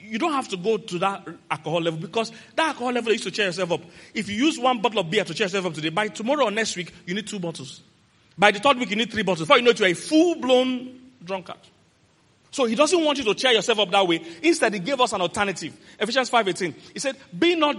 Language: English